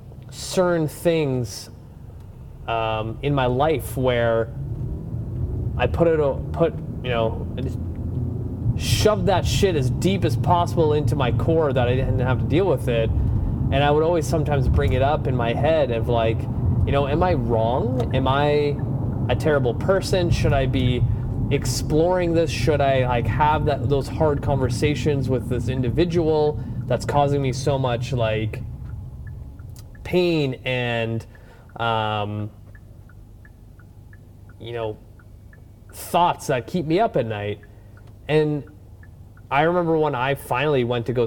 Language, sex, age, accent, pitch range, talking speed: English, male, 30-49, American, 110-140 Hz, 140 wpm